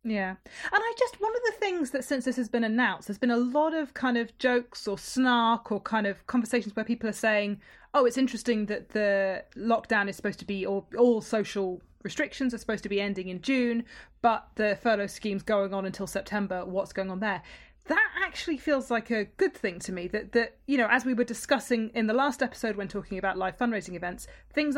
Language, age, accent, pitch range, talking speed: English, 30-49, British, 200-255 Hz, 225 wpm